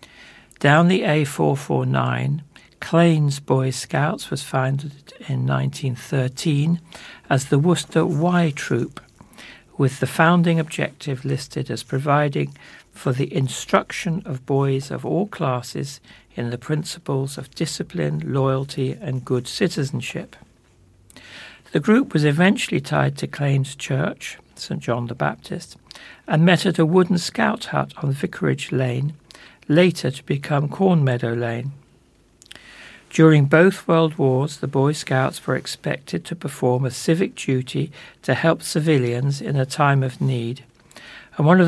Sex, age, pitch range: male, 60-79, 130-165 Hz